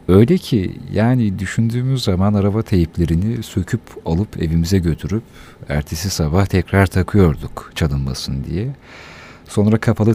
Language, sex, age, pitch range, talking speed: Turkish, male, 50-69, 80-110 Hz, 110 wpm